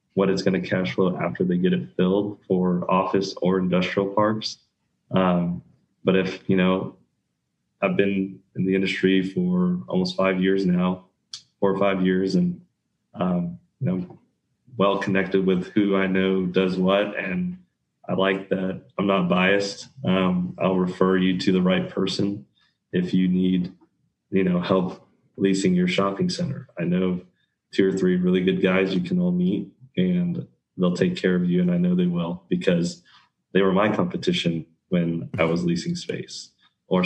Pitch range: 90-110 Hz